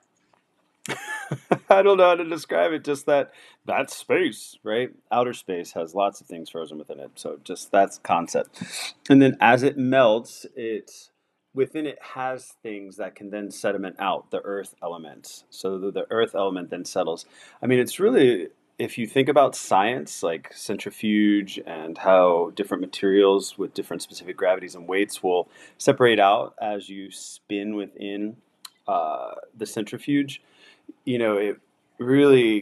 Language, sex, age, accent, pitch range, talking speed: English, male, 30-49, American, 100-130 Hz, 155 wpm